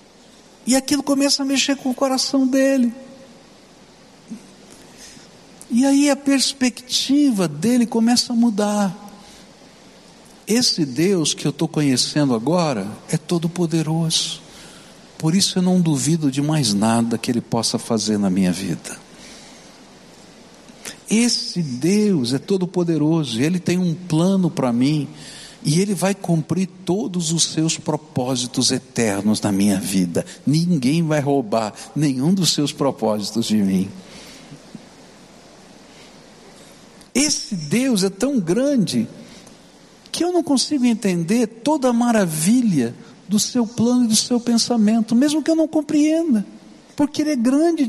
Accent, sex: Brazilian, male